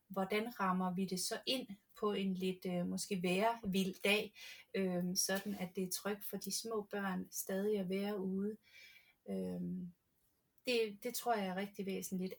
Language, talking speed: Danish, 170 wpm